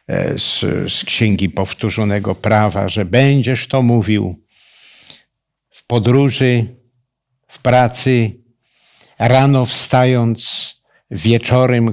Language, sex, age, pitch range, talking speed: Polish, male, 50-69, 100-130 Hz, 80 wpm